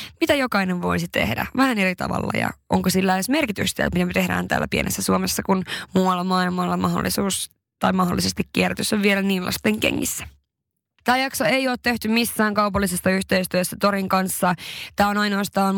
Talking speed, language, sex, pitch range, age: 160 wpm, Finnish, female, 180-210 Hz, 20-39